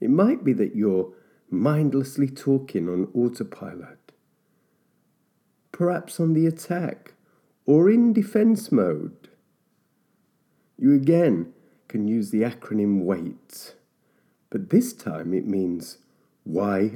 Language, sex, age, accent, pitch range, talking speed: English, male, 40-59, British, 115-160 Hz, 105 wpm